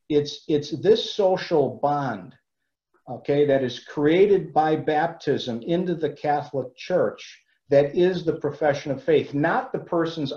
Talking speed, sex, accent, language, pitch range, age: 140 wpm, male, American, English, 135-170 Hz, 50-69